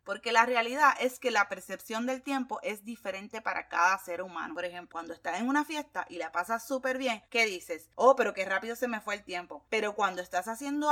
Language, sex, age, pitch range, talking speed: Spanish, female, 20-39, 195-275 Hz, 230 wpm